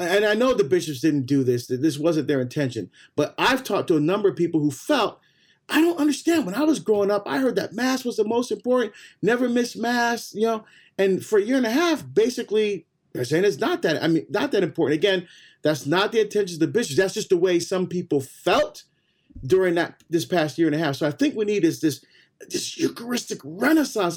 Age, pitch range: 40-59, 170-250 Hz